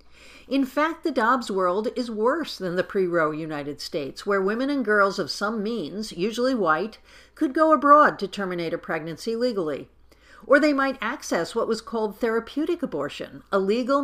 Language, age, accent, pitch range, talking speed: English, 50-69, American, 180-245 Hz, 170 wpm